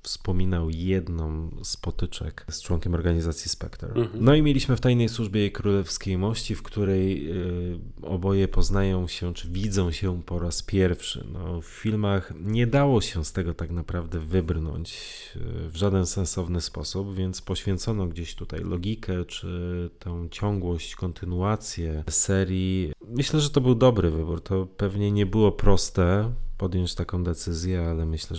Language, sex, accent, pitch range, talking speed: Polish, male, native, 85-100 Hz, 150 wpm